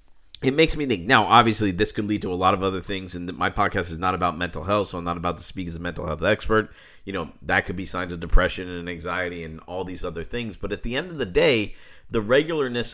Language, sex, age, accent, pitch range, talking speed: English, male, 40-59, American, 90-120 Hz, 270 wpm